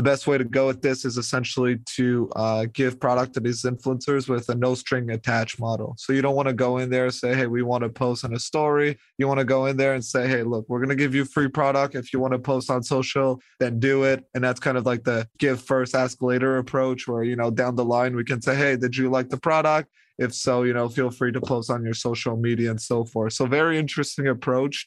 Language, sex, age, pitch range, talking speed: English, male, 20-39, 120-135 Hz, 270 wpm